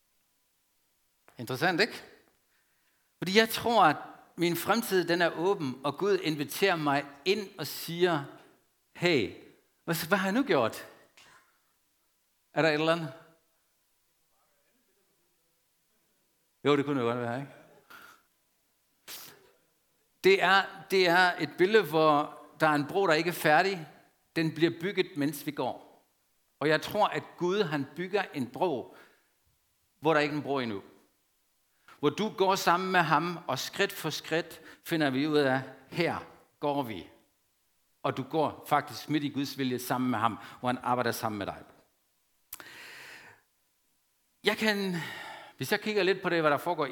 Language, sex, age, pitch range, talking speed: Danish, male, 50-69, 125-170 Hz, 150 wpm